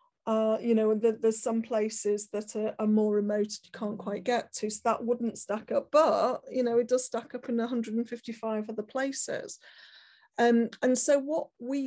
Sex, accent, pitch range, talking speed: female, British, 205-230 Hz, 190 wpm